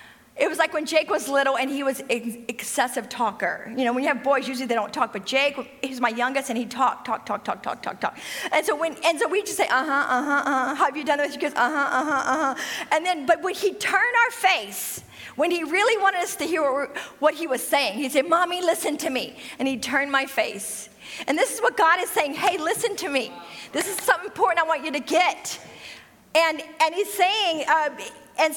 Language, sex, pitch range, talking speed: English, female, 270-370 Hz, 250 wpm